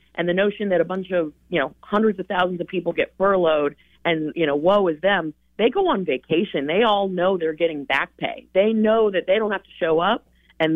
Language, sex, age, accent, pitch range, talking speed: English, female, 30-49, American, 160-195 Hz, 240 wpm